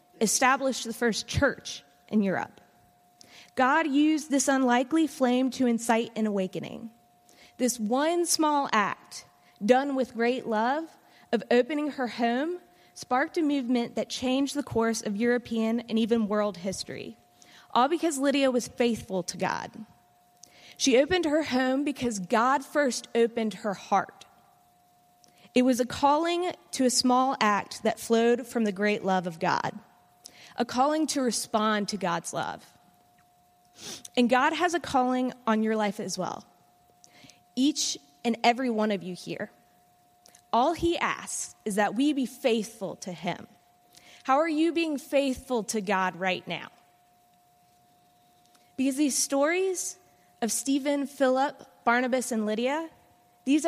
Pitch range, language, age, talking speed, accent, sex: 200-270 Hz, English, 20-39, 140 wpm, American, female